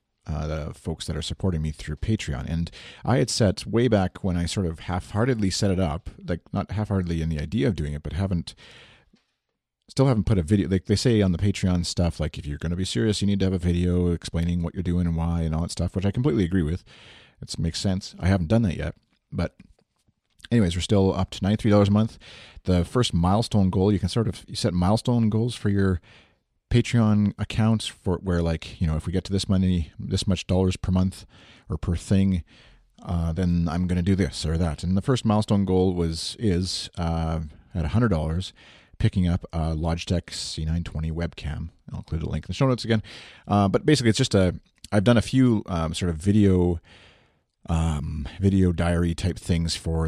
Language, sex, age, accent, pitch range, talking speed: English, male, 40-59, American, 85-105 Hz, 220 wpm